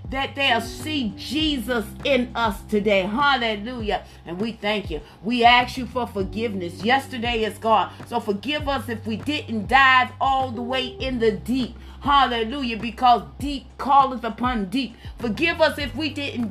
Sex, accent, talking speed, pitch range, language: female, American, 160 wpm, 225-300 Hz, English